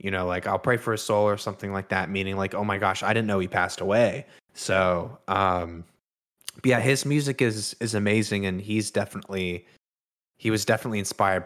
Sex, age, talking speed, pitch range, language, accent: male, 20-39, 205 wpm, 95-115 Hz, English, American